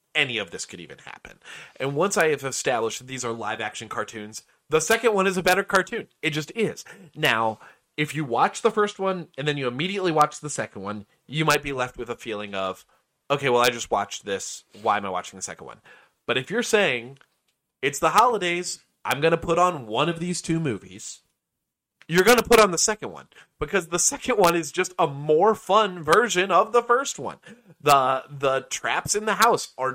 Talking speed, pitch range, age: 220 wpm, 130-185 Hz, 30-49